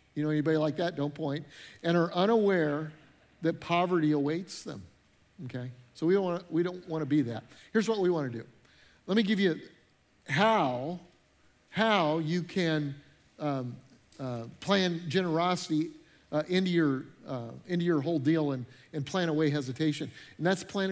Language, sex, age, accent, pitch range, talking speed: English, male, 50-69, American, 140-180 Hz, 165 wpm